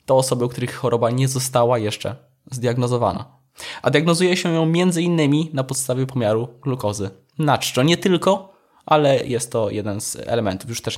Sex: male